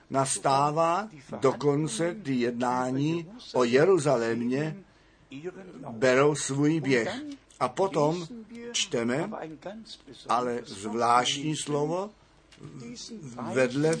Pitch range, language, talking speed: 125-170 Hz, Czech, 70 wpm